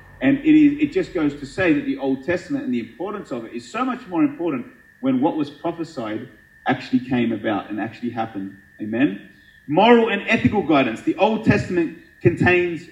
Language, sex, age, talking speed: English, male, 30-49, 185 wpm